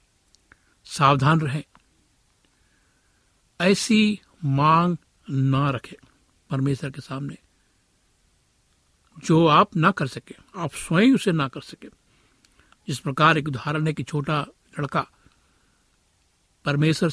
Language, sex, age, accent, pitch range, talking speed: Hindi, male, 60-79, native, 135-170 Hz, 100 wpm